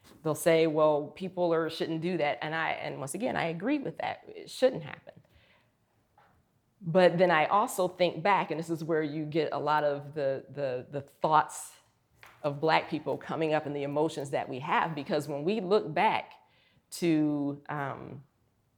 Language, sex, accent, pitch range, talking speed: English, female, American, 135-170 Hz, 180 wpm